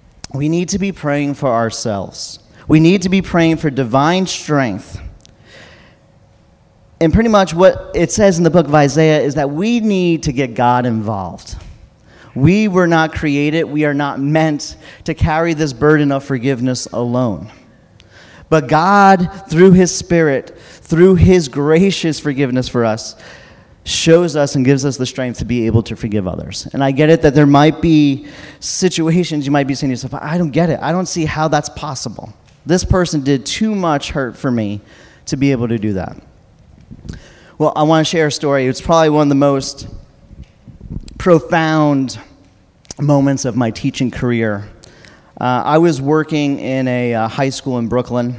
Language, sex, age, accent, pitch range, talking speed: English, male, 40-59, American, 125-160 Hz, 175 wpm